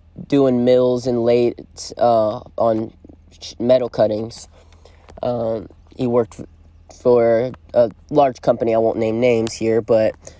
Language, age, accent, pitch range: English, 20-39, American, 110-130 Hz